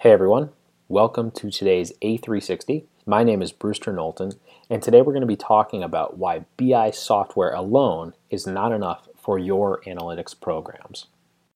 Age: 30-49